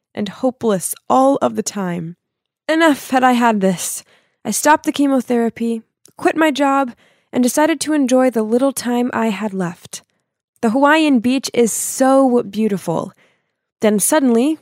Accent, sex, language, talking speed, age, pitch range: American, female, English, 150 wpm, 20-39, 200-265 Hz